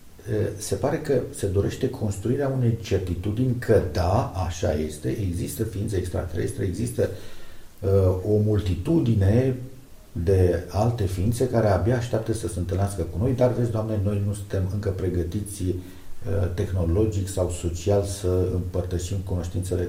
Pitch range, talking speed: 90-110 Hz, 135 wpm